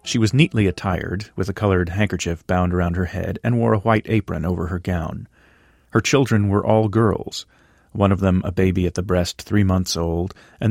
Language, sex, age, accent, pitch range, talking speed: English, male, 40-59, American, 85-105 Hz, 205 wpm